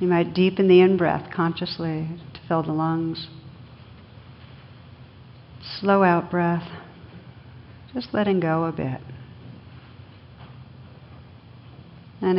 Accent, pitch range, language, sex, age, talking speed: American, 125-175 Hz, English, female, 60-79, 85 wpm